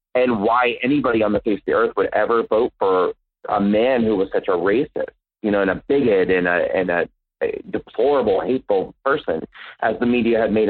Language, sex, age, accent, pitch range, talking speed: English, male, 30-49, American, 105-150 Hz, 210 wpm